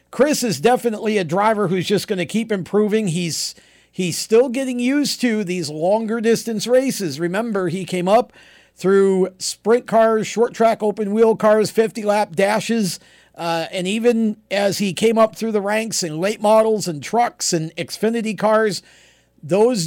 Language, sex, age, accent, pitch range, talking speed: English, male, 50-69, American, 170-220 Hz, 165 wpm